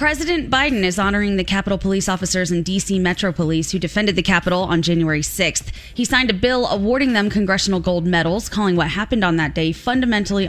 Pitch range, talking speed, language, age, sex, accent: 180-240 Hz, 200 wpm, English, 20-39, female, American